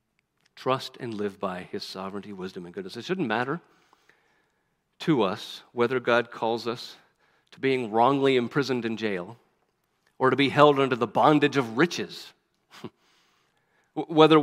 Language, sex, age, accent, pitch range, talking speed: English, male, 50-69, American, 115-135 Hz, 140 wpm